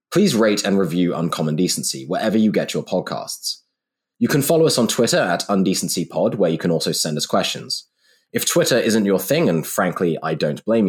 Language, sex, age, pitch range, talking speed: English, male, 20-39, 75-110 Hz, 200 wpm